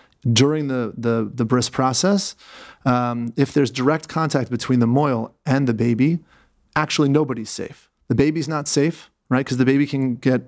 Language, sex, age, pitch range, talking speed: English, male, 30-49, 120-145 Hz, 170 wpm